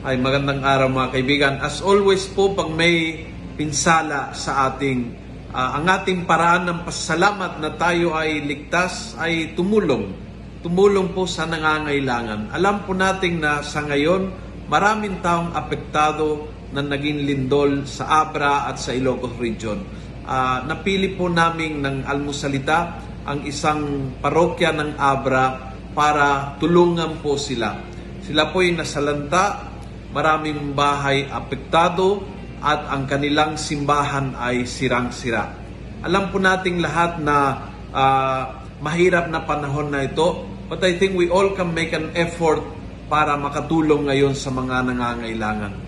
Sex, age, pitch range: male, 50-69, 135-170 Hz